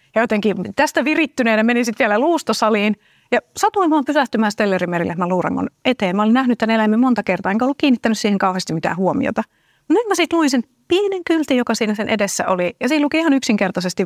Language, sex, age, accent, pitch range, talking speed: Finnish, female, 30-49, native, 185-265 Hz, 195 wpm